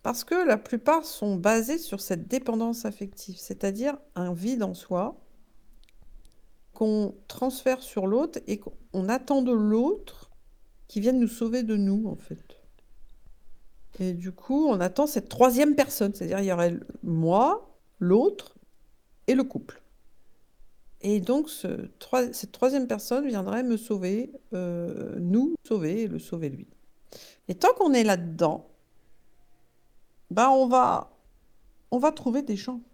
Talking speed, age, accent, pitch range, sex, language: 140 wpm, 50-69, French, 205-260 Hz, female, French